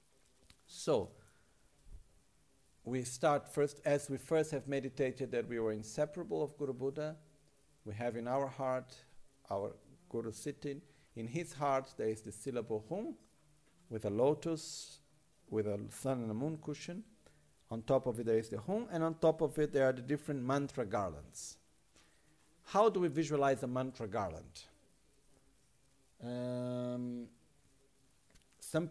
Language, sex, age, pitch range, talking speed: Italian, male, 50-69, 110-145 Hz, 145 wpm